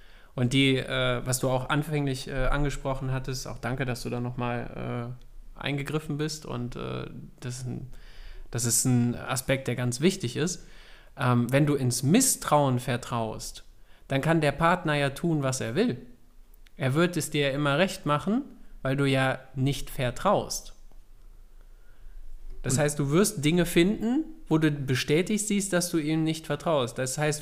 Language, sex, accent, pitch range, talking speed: German, male, German, 125-155 Hz, 160 wpm